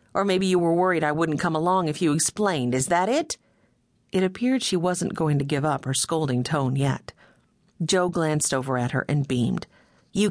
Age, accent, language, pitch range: 50-69, American, English, 150-200 Hz